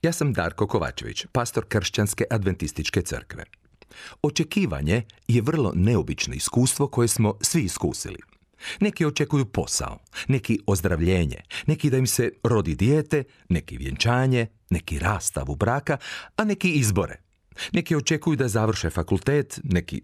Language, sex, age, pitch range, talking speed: Croatian, male, 40-59, 90-135 Hz, 130 wpm